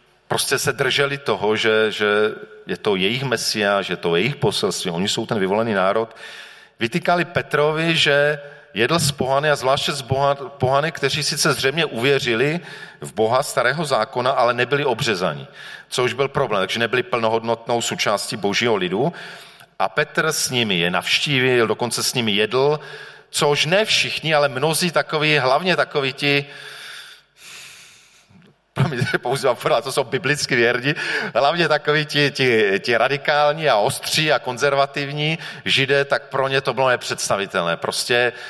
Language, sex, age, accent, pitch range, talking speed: Czech, male, 40-59, native, 125-150 Hz, 140 wpm